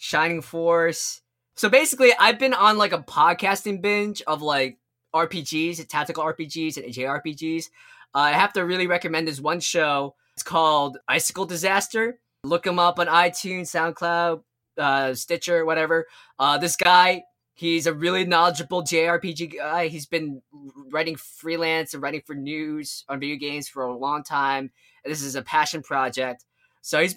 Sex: male